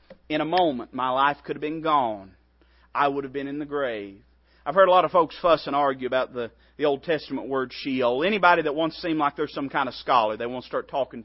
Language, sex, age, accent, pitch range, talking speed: English, male, 40-59, American, 130-205 Hz, 250 wpm